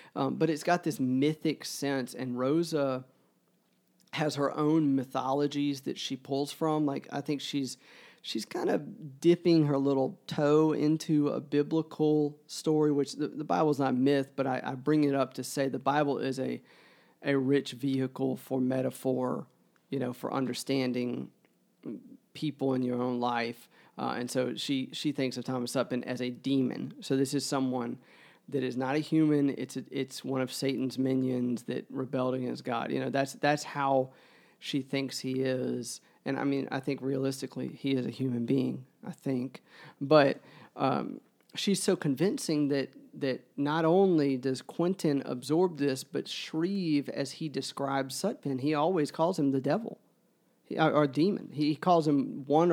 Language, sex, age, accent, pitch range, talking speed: English, male, 40-59, American, 130-150 Hz, 170 wpm